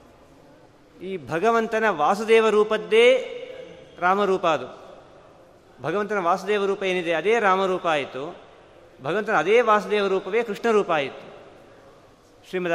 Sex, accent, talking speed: male, native, 90 wpm